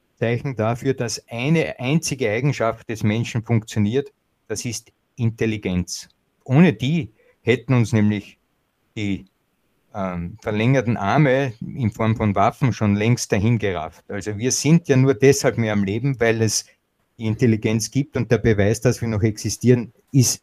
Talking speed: 150 wpm